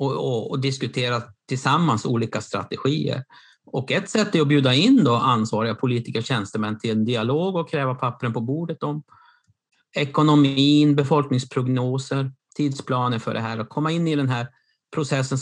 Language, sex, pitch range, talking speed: Swedish, male, 120-145 Hz, 160 wpm